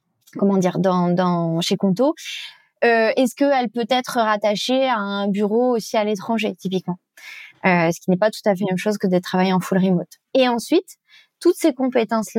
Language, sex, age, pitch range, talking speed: English, female, 20-39, 200-255 Hz, 205 wpm